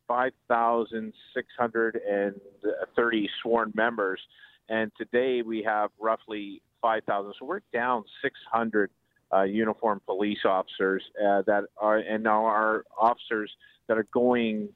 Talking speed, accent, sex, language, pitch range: 110 wpm, American, male, English, 105-125 Hz